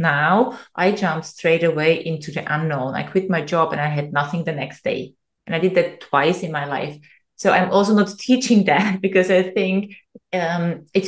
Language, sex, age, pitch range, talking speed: English, female, 20-39, 165-200 Hz, 205 wpm